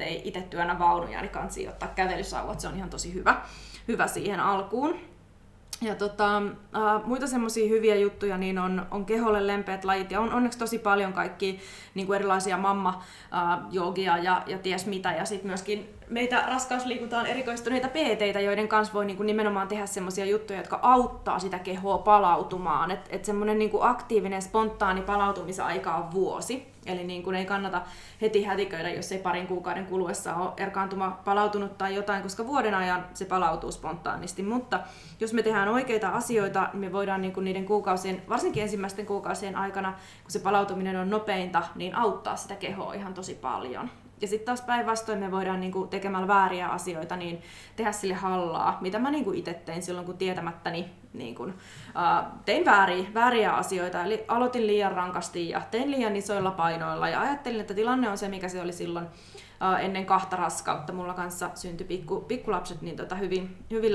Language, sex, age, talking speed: Finnish, female, 20-39, 165 wpm